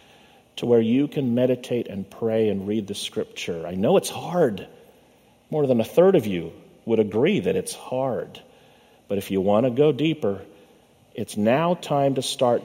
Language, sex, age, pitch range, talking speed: English, male, 50-69, 100-145 Hz, 180 wpm